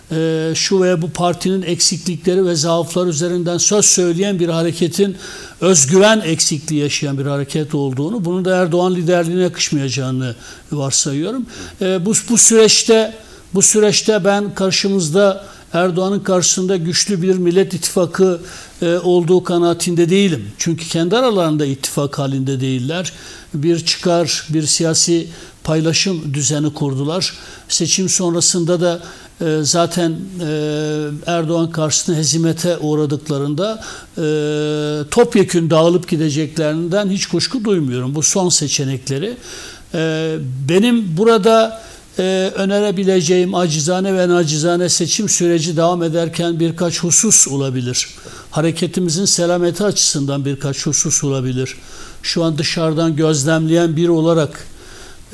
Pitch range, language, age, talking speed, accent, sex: 155-185 Hz, Turkish, 60-79, 105 wpm, native, male